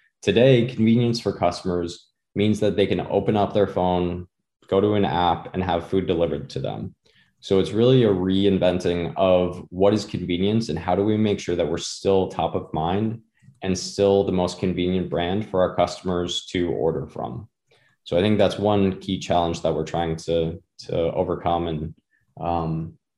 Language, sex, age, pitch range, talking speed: English, male, 20-39, 85-100 Hz, 180 wpm